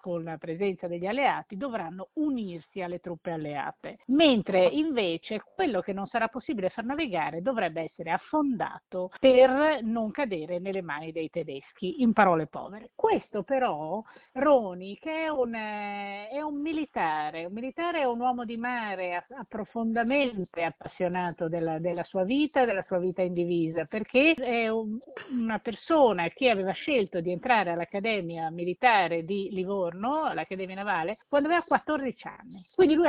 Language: Italian